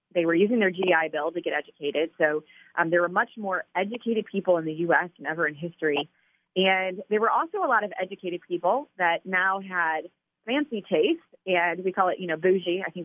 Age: 30-49